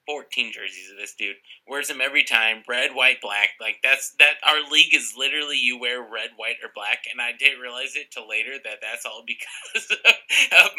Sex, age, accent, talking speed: male, 30-49, American, 210 wpm